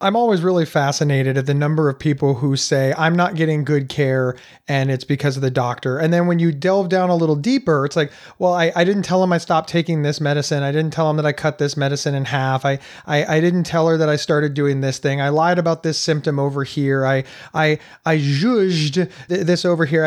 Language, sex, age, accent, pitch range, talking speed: English, male, 30-49, American, 145-175 Hz, 240 wpm